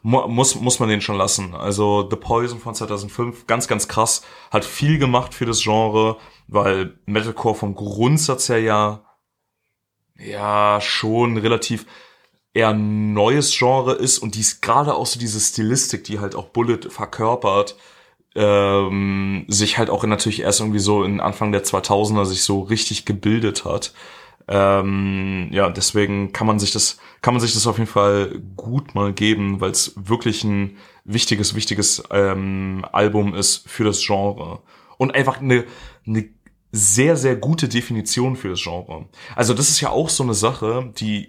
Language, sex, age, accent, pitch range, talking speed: German, male, 30-49, German, 100-120 Hz, 160 wpm